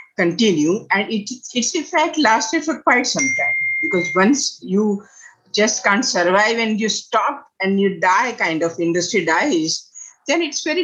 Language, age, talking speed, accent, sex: English, 50-69, 160 wpm, Indian, female